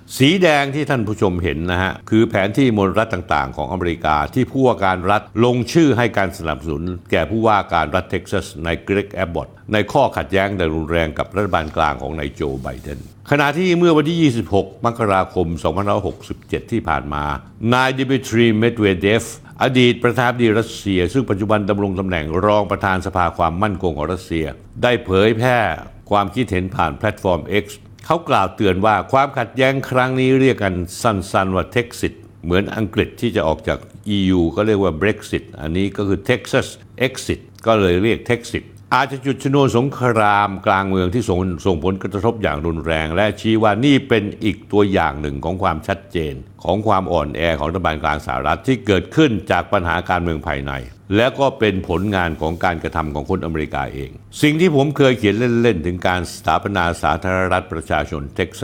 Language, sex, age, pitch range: Thai, male, 60-79, 90-115 Hz